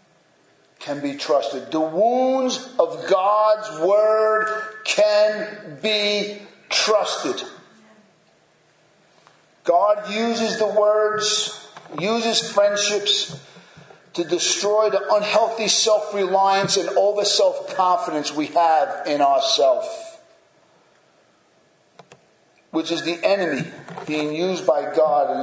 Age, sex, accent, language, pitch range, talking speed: 50-69, male, American, English, 160-220 Hz, 95 wpm